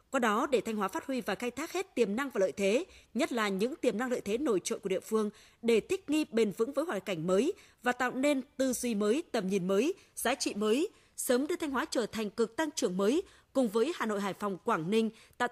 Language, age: Vietnamese, 20-39